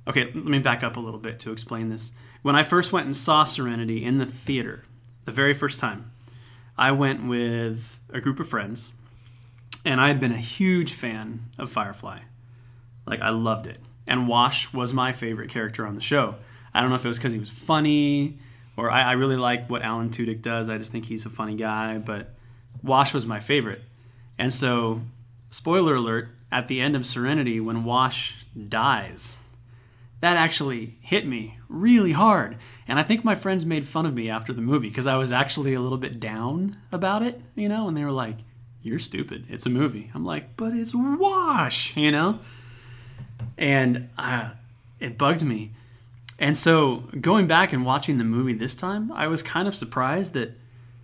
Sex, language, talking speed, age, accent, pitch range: male, English, 195 wpm, 30-49, American, 115-140 Hz